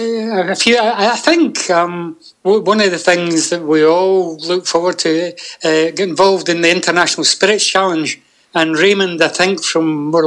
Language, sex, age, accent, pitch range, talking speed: English, male, 60-79, British, 160-185 Hz, 170 wpm